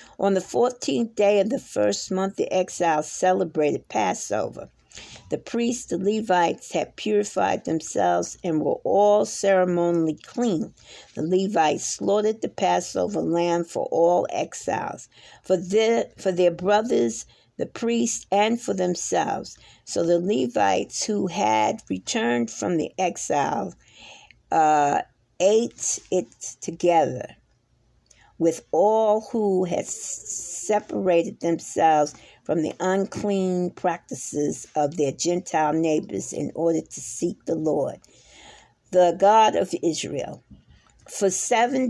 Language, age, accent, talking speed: English, 50-69, American, 115 wpm